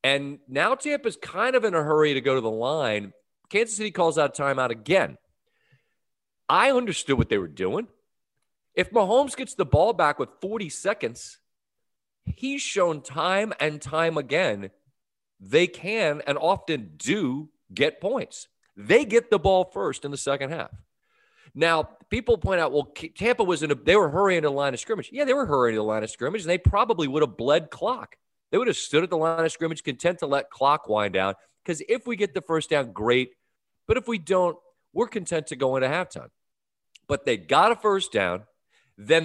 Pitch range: 130-195 Hz